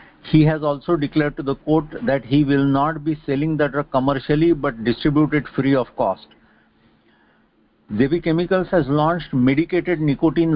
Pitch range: 130-155 Hz